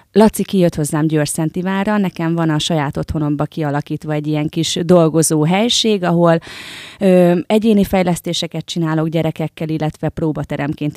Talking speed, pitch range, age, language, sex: 130 wpm, 155-195 Hz, 30-49, Hungarian, female